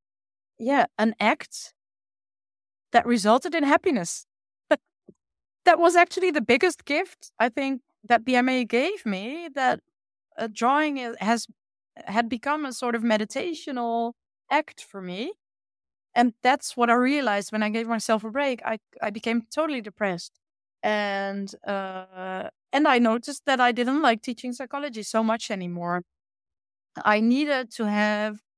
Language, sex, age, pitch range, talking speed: English, female, 20-39, 190-250 Hz, 140 wpm